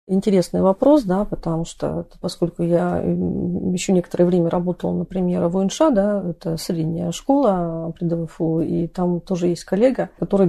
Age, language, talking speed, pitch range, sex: 40-59, Russian, 150 wpm, 170-195 Hz, female